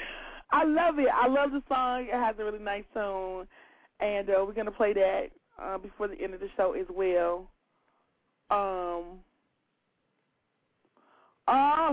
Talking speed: 155 wpm